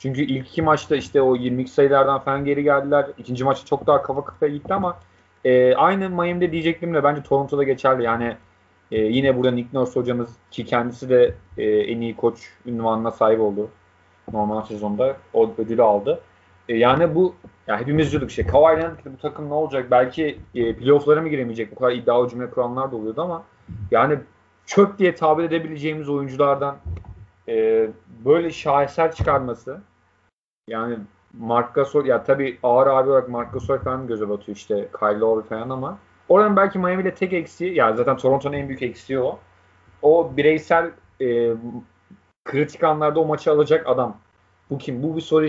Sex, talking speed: male, 170 wpm